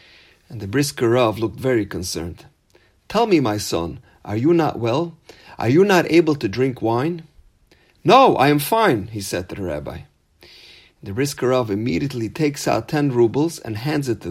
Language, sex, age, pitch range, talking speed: English, male, 40-59, 115-170 Hz, 170 wpm